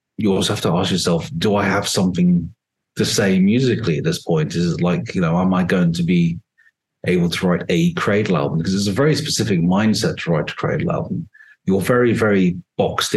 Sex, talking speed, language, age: male, 215 wpm, English, 30-49